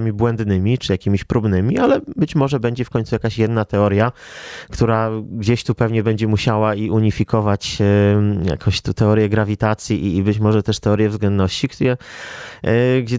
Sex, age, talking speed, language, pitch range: male, 20-39, 145 wpm, Polish, 110-125 Hz